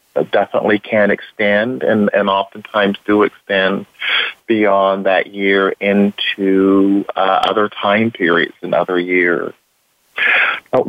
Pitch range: 100-120 Hz